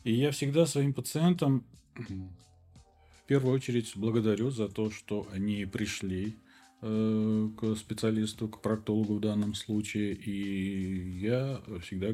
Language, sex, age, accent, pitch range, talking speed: Russian, male, 40-59, native, 95-120 Hz, 120 wpm